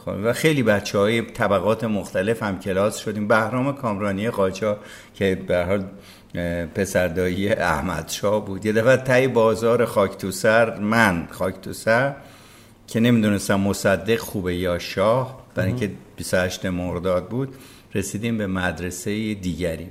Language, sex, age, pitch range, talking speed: Persian, male, 60-79, 95-110 Hz, 130 wpm